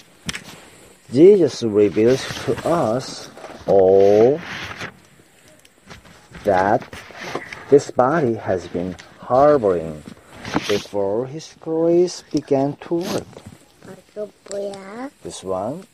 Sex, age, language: male, 50-69, Korean